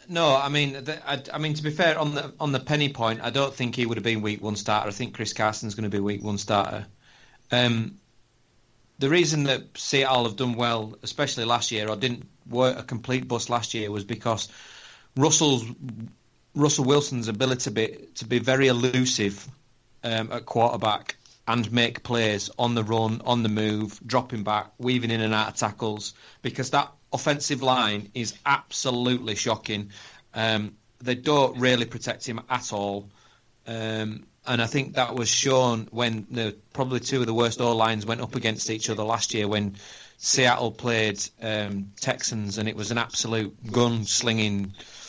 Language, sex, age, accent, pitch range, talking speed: English, male, 30-49, British, 110-125 Hz, 180 wpm